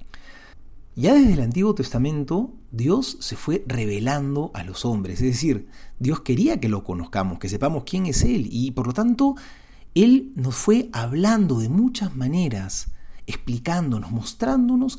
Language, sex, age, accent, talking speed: Spanish, male, 40-59, Argentinian, 150 wpm